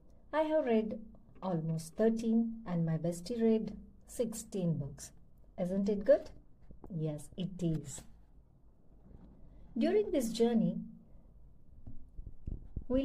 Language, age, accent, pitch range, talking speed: Telugu, 50-69, native, 170-225 Hz, 95 wpm